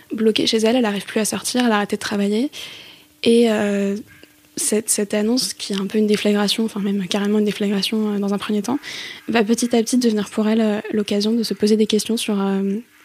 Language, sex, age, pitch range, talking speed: French, female, 10-29, 205-225 Hz, 230 wpm